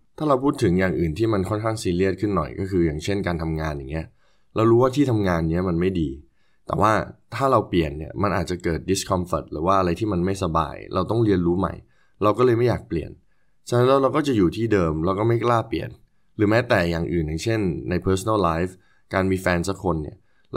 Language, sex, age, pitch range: Thai, male, 20-39, 85-105 Hz